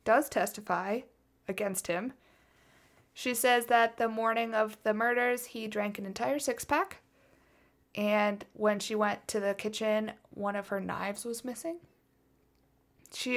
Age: 20-39